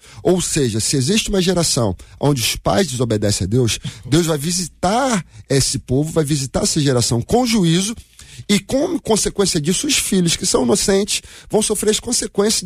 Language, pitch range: Portuguese, 130-185 Hz